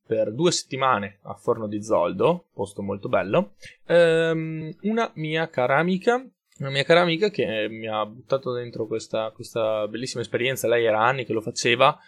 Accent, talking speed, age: native, 170 wpm, 20-39